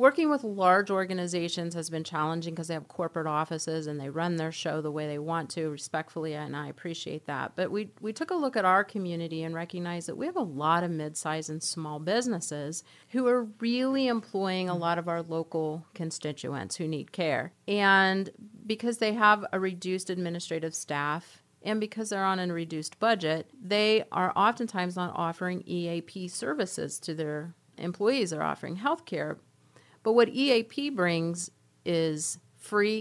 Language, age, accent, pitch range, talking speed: English, 40-59, American, 165-210 Hz, 175 wpm